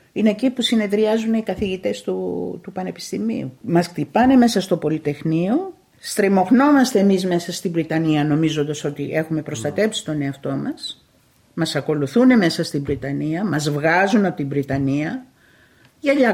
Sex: female